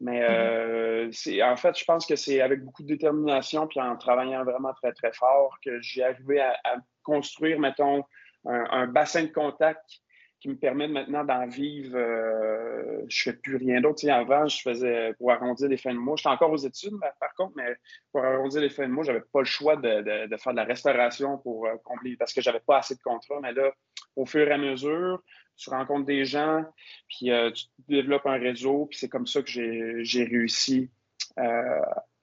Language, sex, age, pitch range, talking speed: French, male, 30-49, 125-145 Hz, 220 wpm